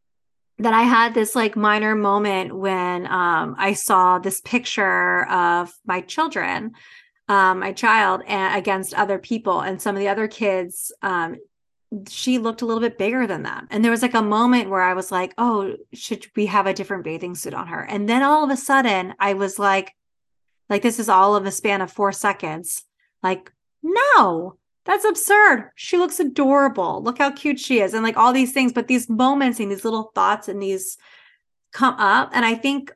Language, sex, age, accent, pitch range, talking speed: English, female, 30-49, American, 195-240 Hz, 195 wpm